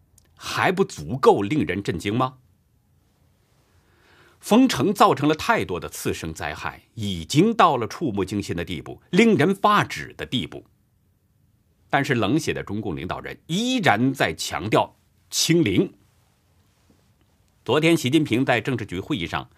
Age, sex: 50-69, male